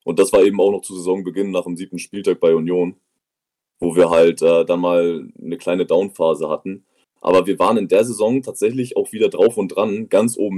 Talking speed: 215 wpm